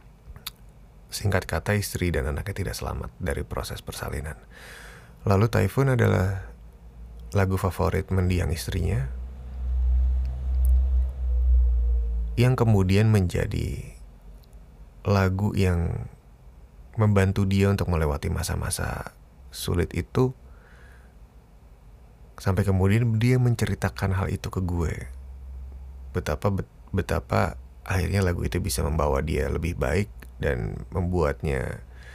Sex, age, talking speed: male, 30-49, 90 wpm